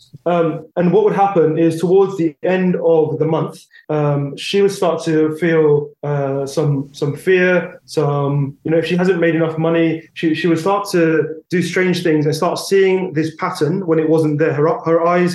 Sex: male